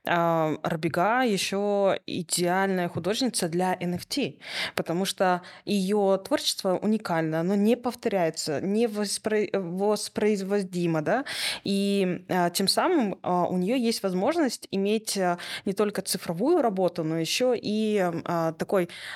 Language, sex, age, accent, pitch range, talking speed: Russian, female, 20-39, native, 170-205 Hz, 105 wpm